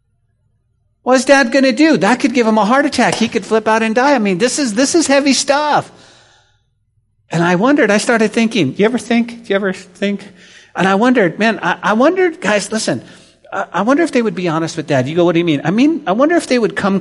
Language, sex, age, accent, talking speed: English, male, 50-69, American, 255 wpm